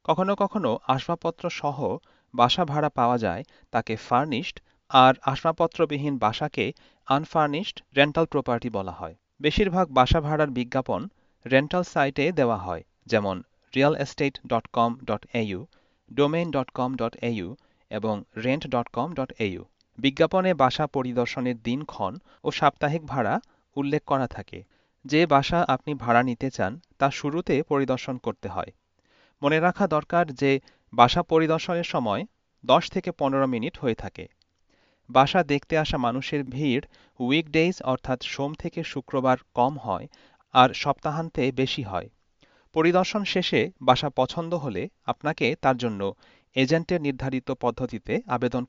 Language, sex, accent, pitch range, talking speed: Bengali, male, native, 125-160 Hz, 115 wpm